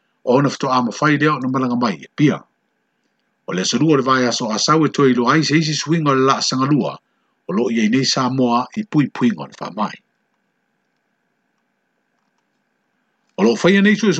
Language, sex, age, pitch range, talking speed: French, male, 50-69, 135-165 Hz, 150 wpm